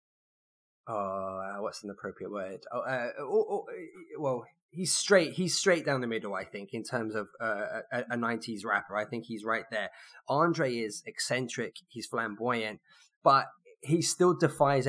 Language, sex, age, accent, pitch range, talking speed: English, male, 20-39, British, 110-135 Hz, 165 wpm